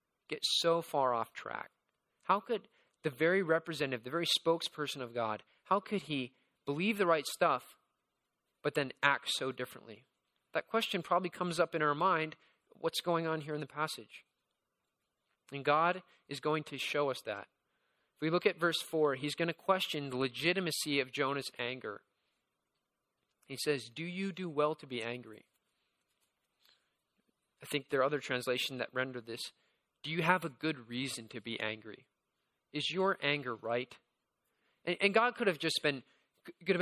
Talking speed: 170 wpm